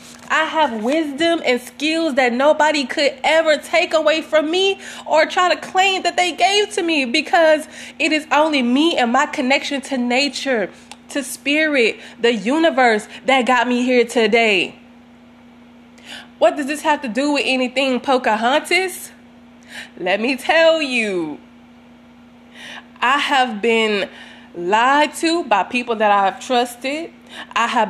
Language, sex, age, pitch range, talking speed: English, female, 20-39, 240-290 Hz, 145 wpm